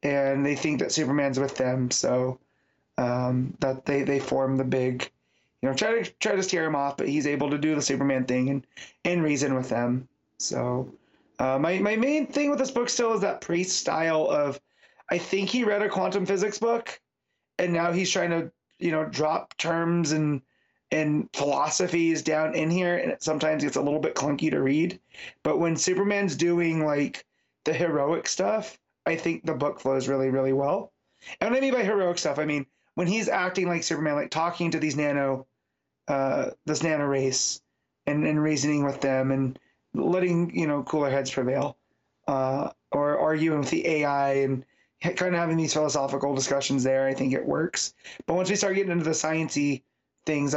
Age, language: 30-49, English